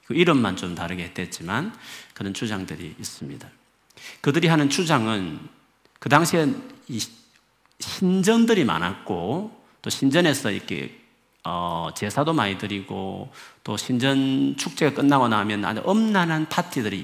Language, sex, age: Korean, male, 40-59